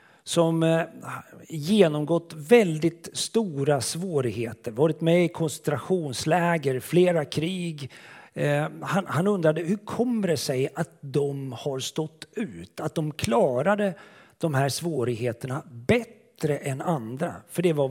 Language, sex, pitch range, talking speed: Swedish, male, 135-180 Hz, 115 wpm